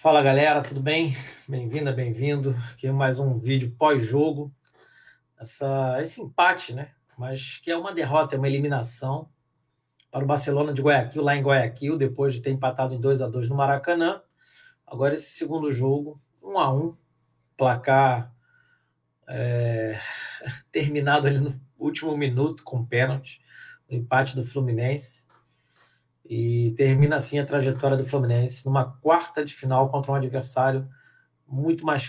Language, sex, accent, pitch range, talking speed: Portuguese, male, Brazilian, 125-145 Hz, 140 wpm